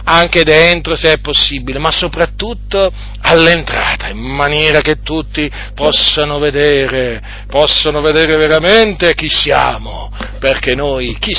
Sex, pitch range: male, 120-170 Hz